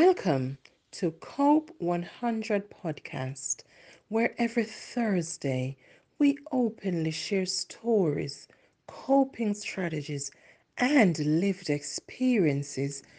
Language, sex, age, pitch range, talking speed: English, female, 40-59, 145-200 Hz, 75 wpm